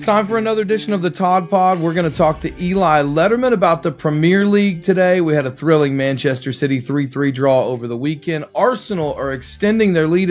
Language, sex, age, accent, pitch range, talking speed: English, male, 40-59, American, 135-175 Hz, 215 wpm